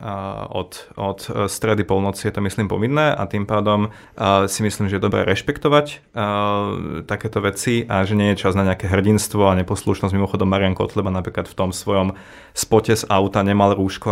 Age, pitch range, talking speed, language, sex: 30-49, 95-110 Hz, 180 wpm, Slovak, male